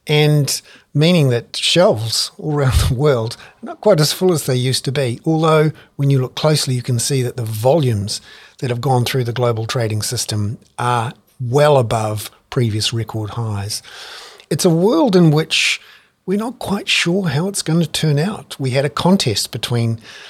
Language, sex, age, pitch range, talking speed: English, male, 50-69, 120-155 Hz, 185 wpm